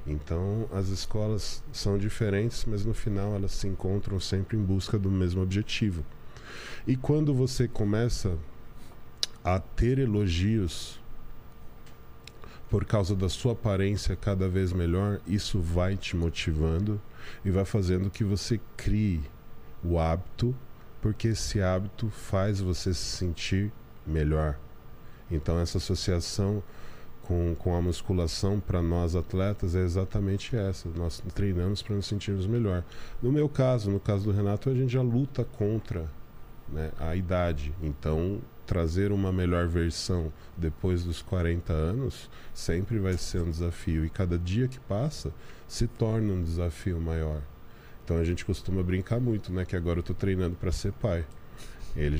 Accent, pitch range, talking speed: Brazilian, 85-105 Hz, 145 wpm